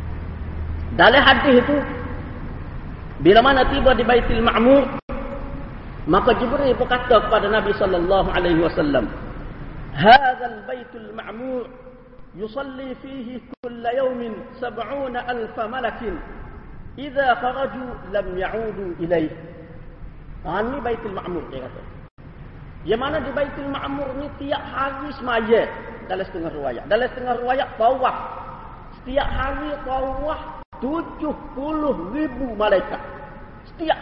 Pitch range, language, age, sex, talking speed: 220-280 Hz, Malay, 40-59, male, 110 wpm